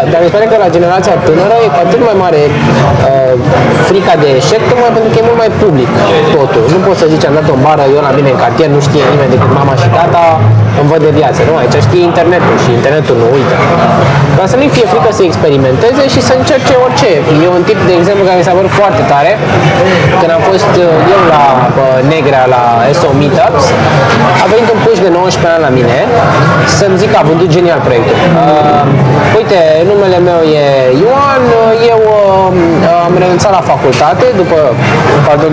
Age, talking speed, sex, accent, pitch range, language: 20-39, 200 wpm, male, native, 145-200 Hz, Romanian